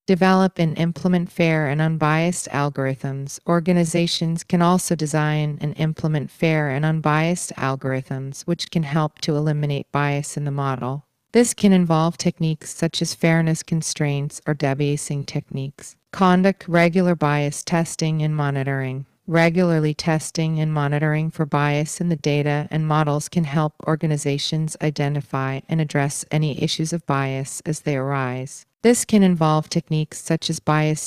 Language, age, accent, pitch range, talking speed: English, 40-59, American, 145-165 Hz, 145 wpm